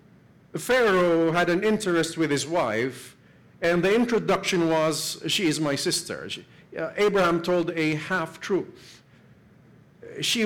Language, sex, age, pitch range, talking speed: English, male, 50-69, 130-180 Hz, 125 wpm